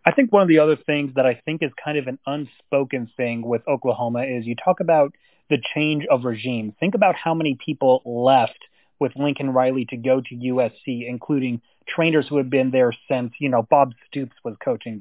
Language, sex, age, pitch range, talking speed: English, male, 30-49, 125-150 Hz, 210 wpm